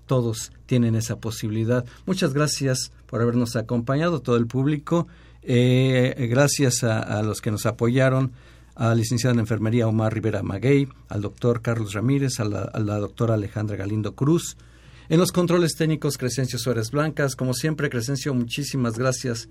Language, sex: Spanish, male